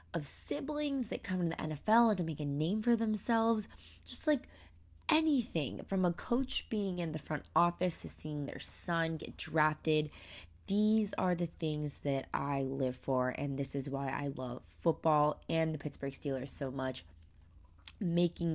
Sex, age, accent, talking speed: female, 20-39, American, 170 wpm